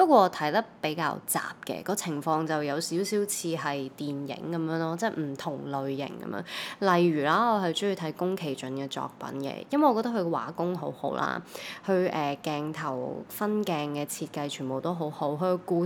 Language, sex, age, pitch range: Chinese, female, 20-39, 150-195 Hz